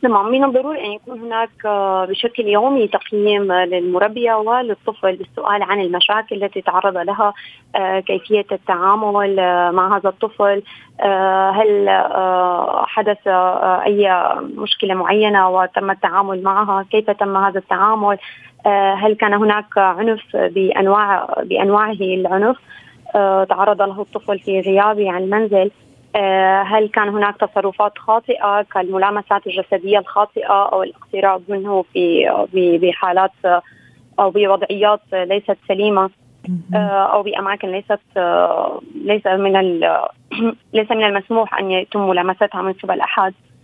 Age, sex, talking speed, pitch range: 20-39, female, 105 wpm, 190-210 Hz